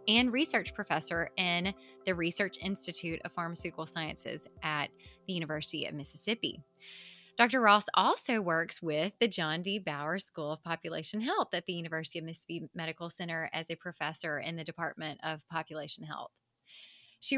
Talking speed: 155 wpm